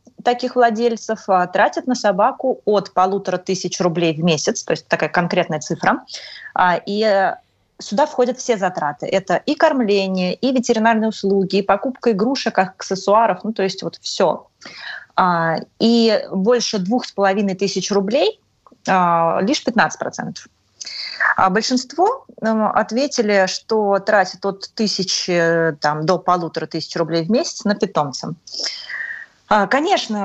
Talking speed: 120 wpm